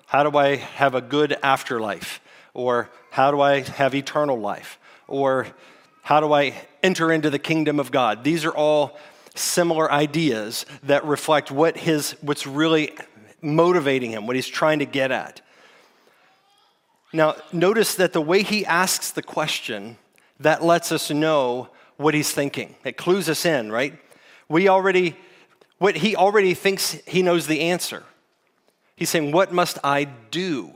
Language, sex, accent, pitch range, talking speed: English, male, American, 140-165 Hz, 155 wpm